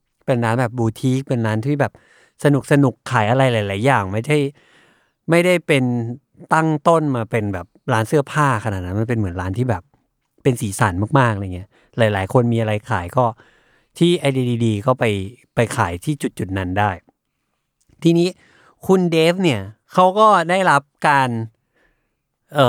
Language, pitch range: Thai, 110-150 Hz